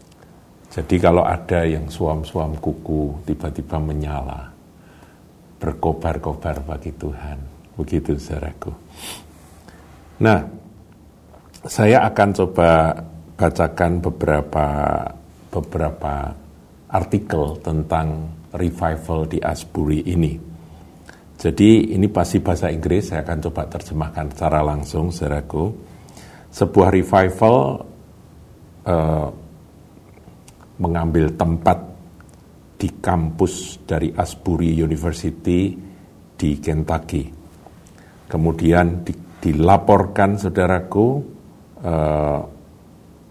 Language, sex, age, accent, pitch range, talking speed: Indonesian, male, 50-69, native, 80-90 Hz, 75 wpm